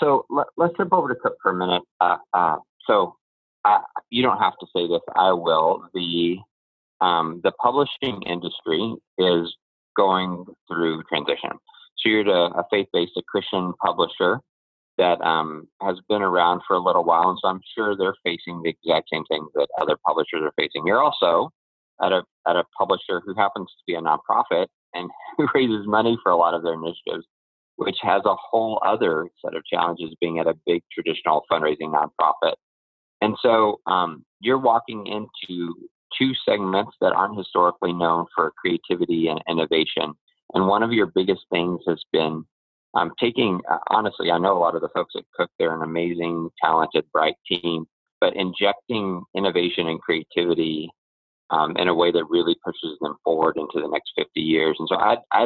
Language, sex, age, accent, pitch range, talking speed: English, male, 30-49, American, 80-95 Hz, 180 wpm